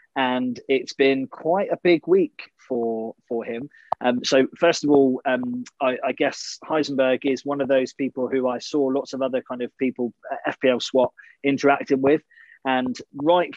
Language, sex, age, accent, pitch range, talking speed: English, male, 20-39, British, 125-140 Hz, 180 wpm